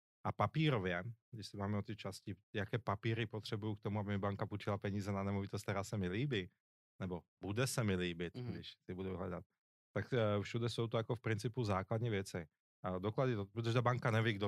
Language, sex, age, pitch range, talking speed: Czech, male, 30-49, 95-110 Hz, 195 wpm